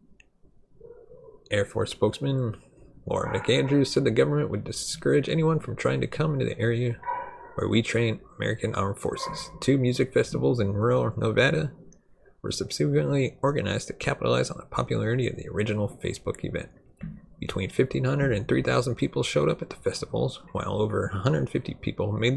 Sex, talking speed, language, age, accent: male, 155 wpm, English, 30-49, American